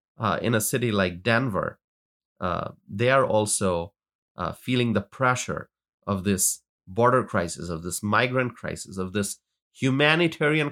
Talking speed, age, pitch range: 140 wpm, 30-49, 105-135 Hz